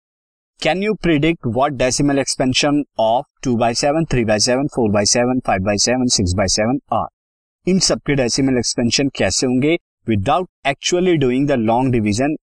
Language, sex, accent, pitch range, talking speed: Hindi, male, native, 110-150 Hz, 135 wpm